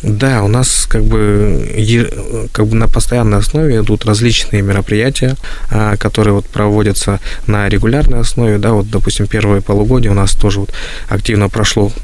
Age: 20-39